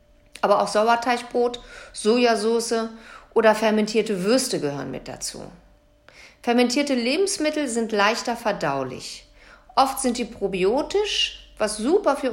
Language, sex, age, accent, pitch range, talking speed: German, female, 50-69, German, 195-255 Hz, 105 wpm